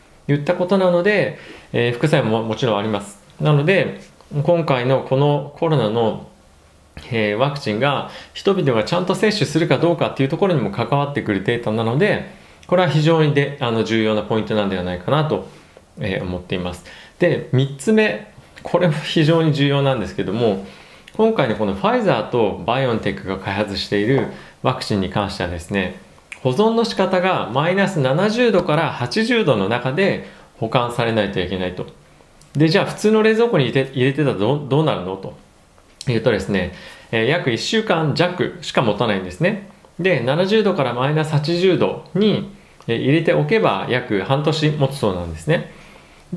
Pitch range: 110-170 Hz